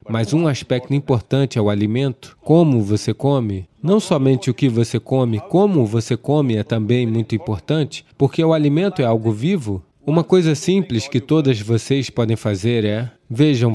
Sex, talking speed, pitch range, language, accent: male, 170 wpm, 115-150 Hz, English, Brazilian